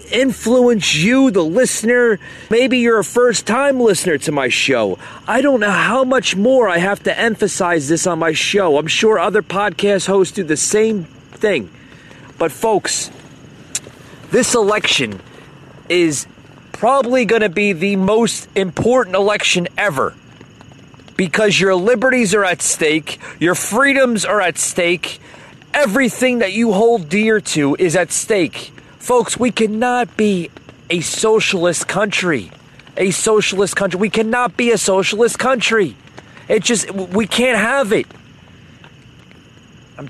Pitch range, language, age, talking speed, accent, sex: 170-235 Hz, English, 30-49, 140 wpm, American, male